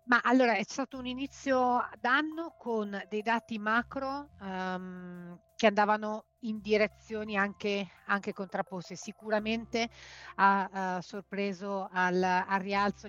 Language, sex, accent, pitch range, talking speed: Italian, female, native, 185-220 Hz, 120 wpm